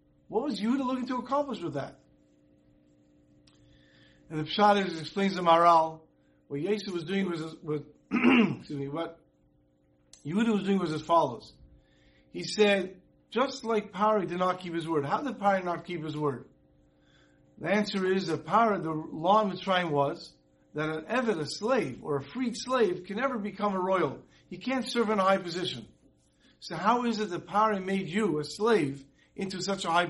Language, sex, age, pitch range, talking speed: English, male, 50-69, 155-215 Hz, 185 wpm